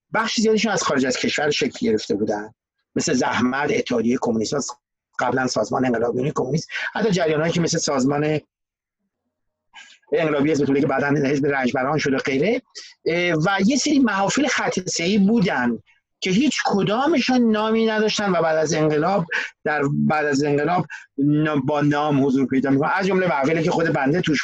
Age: 50-69